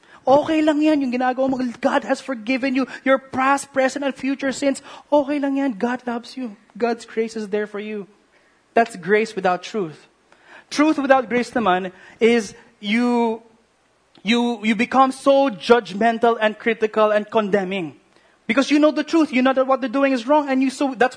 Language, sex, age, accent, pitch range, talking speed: English, male, 20-39, Filipino, 185-255 Hz, 180 wpm